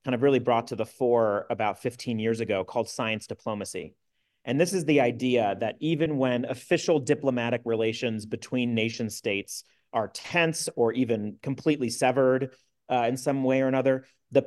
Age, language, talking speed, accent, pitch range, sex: 30-49, English, 170 wpm, American, 115-135 Hz, male